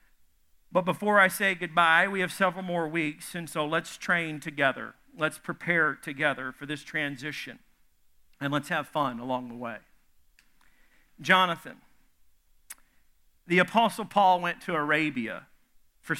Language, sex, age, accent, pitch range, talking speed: English, male, 50-69, American, 150-195 Hz, 135 wpm